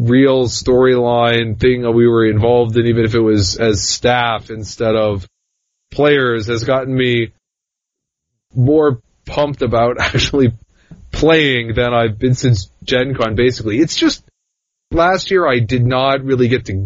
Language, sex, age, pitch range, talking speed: English, male, 20-39, 115-135 Hz, 150 wpm